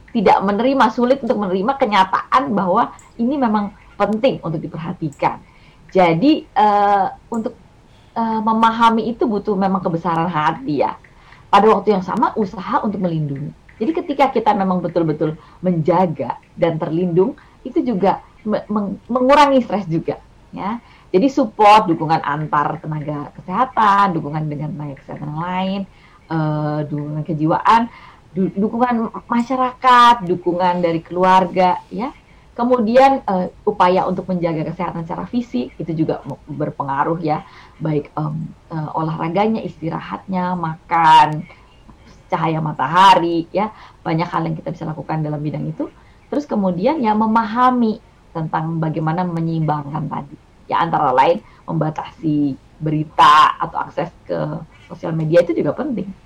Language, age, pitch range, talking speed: Indonesian, 30-49, 160-220 Hz, 125 wpm